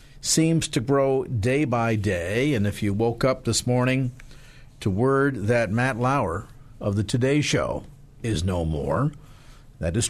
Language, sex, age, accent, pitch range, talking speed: English, male, 50-69, American, 115-150 Hz, 160 wpm